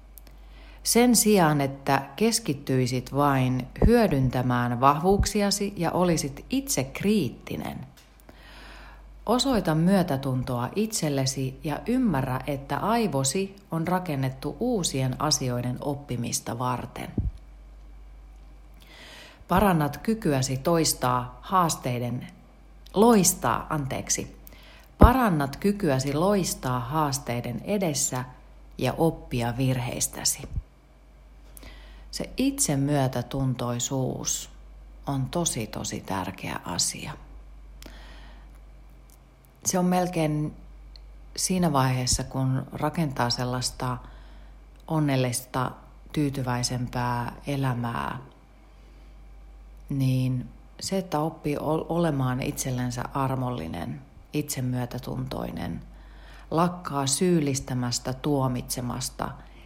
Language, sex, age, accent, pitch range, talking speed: Finnish, female, 40-59, native, 120-160 Hz, 65 wpm